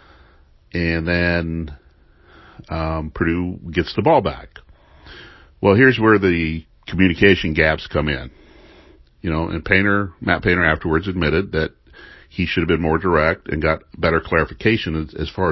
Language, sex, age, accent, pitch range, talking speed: English, male, 50-69, American, 75-90 Hz, 145 wpm